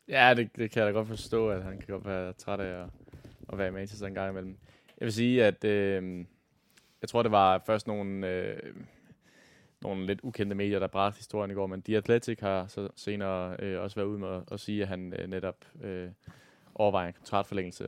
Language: Danish